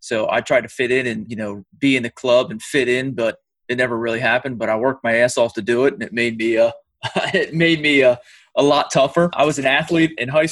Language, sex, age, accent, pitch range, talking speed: English, male, 20-39, American, 115-135 Hz, 275 wpm